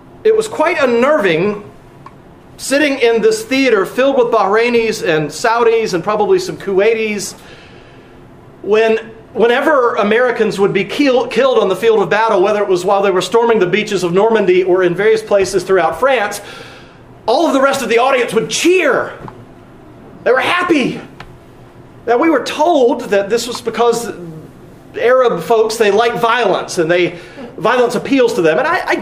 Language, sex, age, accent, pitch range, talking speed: English, male, 40-59, American, 190-265 Hz, 165 wpm